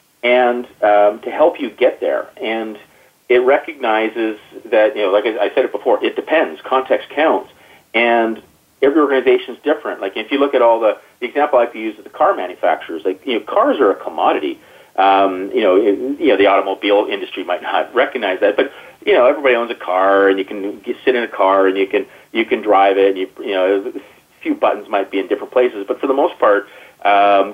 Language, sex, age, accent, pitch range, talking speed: English, male, 40-59, American, 100-150 Hz, 225 wpm